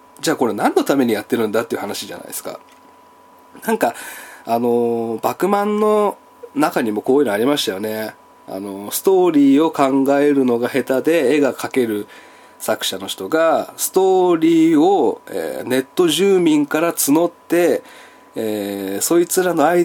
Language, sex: Japanese, male